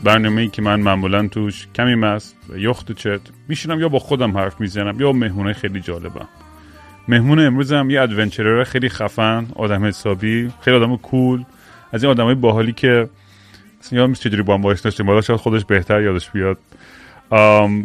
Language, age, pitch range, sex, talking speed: Persian, 30-49, 100-120 Hz, male, 175 wpm